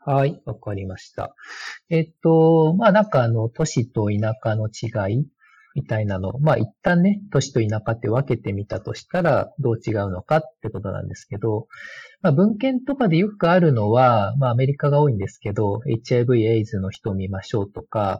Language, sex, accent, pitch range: Japanese, male, native, 105-155 Hz